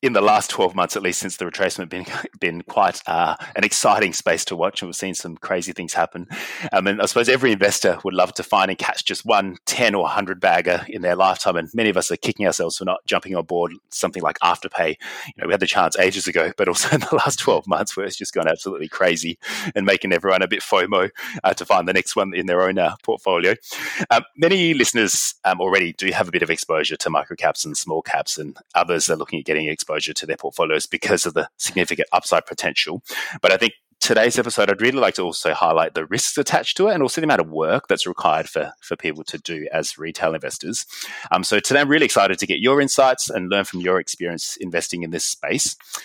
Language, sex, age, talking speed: English, male, 30-49, 240 wpm